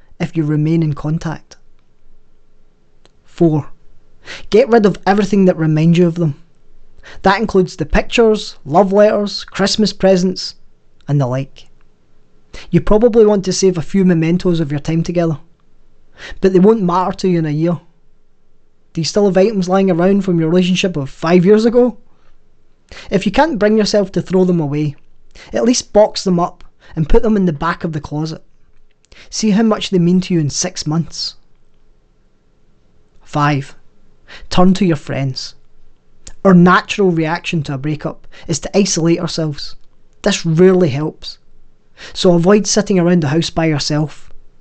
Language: English